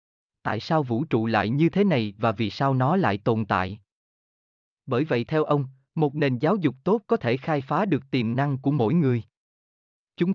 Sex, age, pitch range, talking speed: male, 20-39, 110-155 Hz, 205 wpm